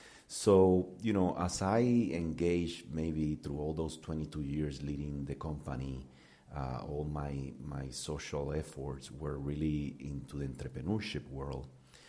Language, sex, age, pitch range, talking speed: English, male, 40-59, 65-85 Hz, 135 wpm